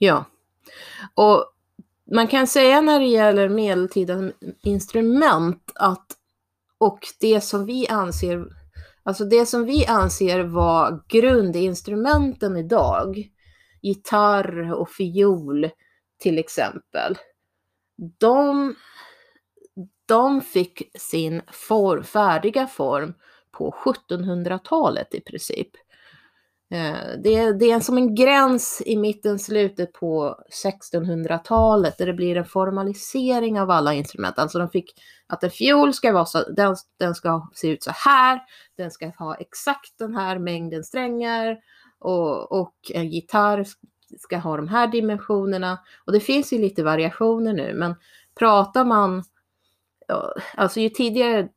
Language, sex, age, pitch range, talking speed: Swedish, female, 30-49, 175-230 Hz, 120 wpm